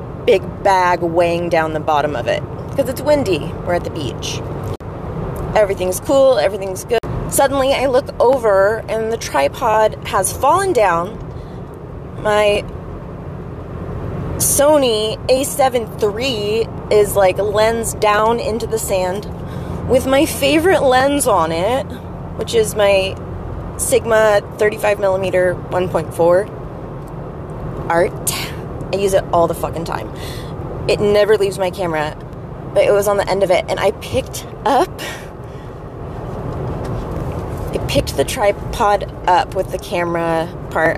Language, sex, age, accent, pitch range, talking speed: English, female, 20-39, American, 170-215 Hz, 125 wpm